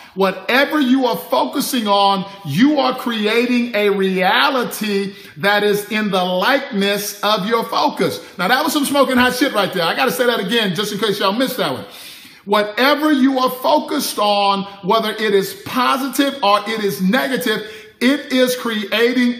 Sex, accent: male, American